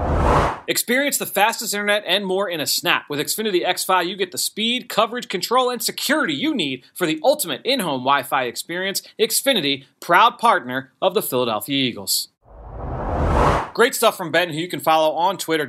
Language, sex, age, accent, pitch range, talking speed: English, male, 30-49, American, 145-195 Hz, 175 wpm